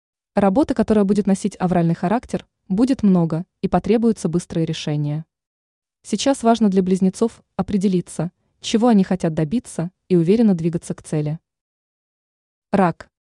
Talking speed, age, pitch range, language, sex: 120 wpm, 20-39, 175-215 Hz, Russian, female